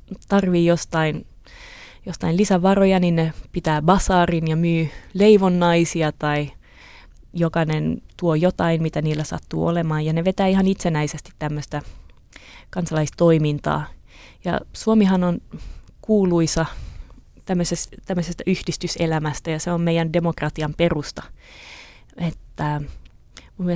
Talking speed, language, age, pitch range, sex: 105 wpm, Finnish, 20-39, 155-185 Hz, female